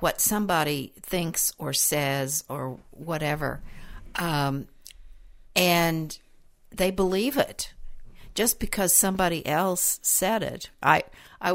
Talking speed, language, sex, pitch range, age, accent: 105 wpm, English, female, 135-175 Hz, 60-79, American